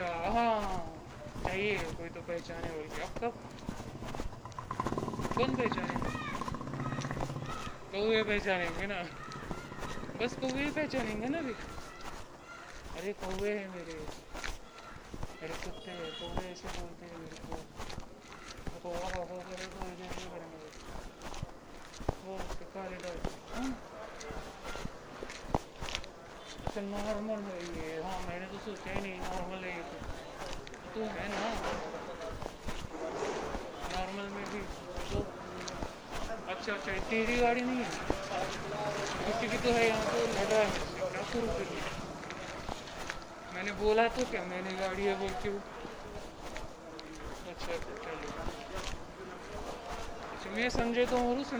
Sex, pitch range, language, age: male, 180-235 Hz, Marathi, 20-39